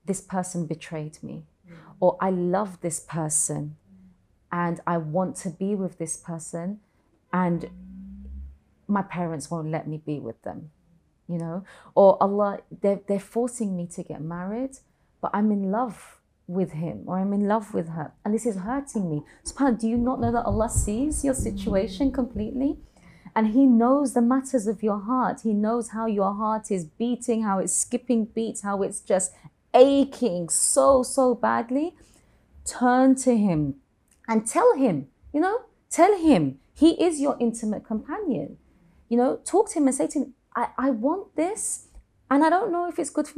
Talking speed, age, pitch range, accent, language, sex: 175 wpm, 30-49, 180-275 Hz, British, English, female